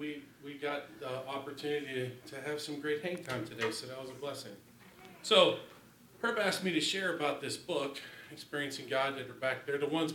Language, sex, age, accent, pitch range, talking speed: English, male, 40-59, American, 130-160 Hz, 205 wpm